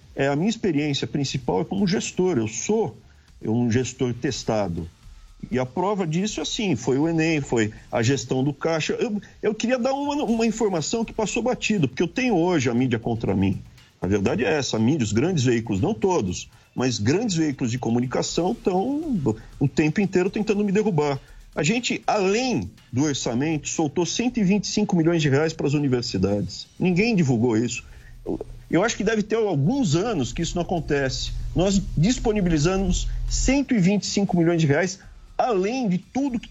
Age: 50-69